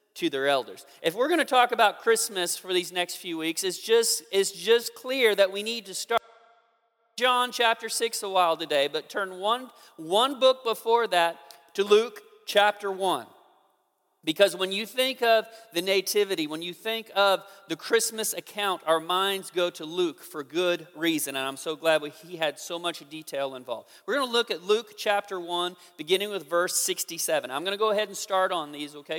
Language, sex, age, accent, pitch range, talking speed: English, male, 40-59, American, 170-210 Hz, 195 wpm